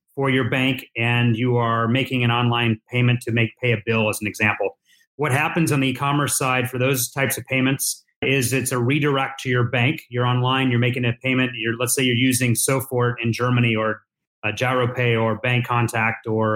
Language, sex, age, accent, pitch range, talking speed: English, male, 30-49, American, 120-140 Hz, 210 wpm